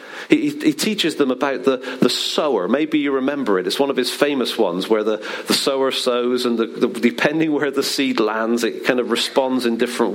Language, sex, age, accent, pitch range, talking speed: English, male, 40-59, British, 120-200 Hz, 220 wpm